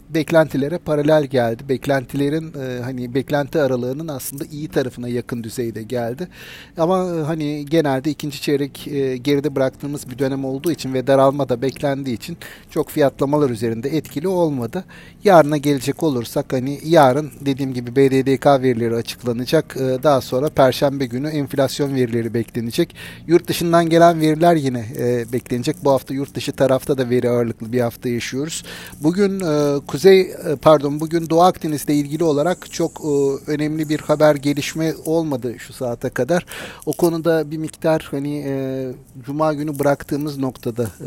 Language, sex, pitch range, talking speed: Turkish, male, 130-160 Hz, 145 wpm